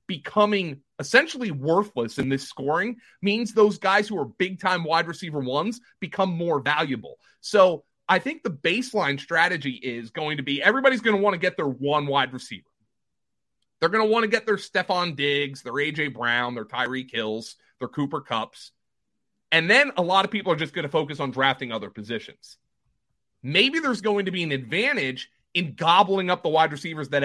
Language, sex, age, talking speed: English, male, 30-49, 190 wpm